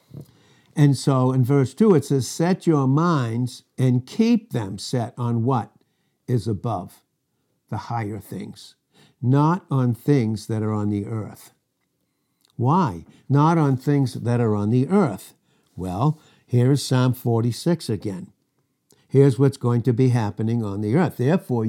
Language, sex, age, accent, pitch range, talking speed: English, male, 60-79, American, 110-140 Hz, 145 wpm